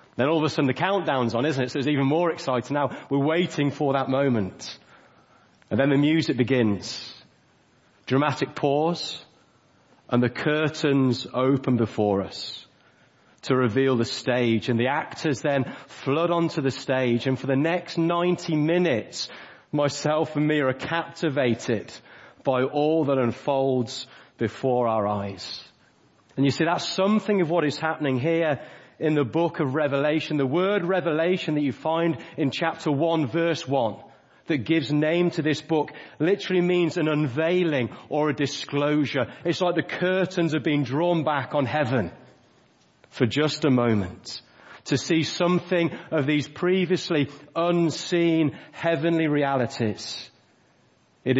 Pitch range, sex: 130-160 Hz, male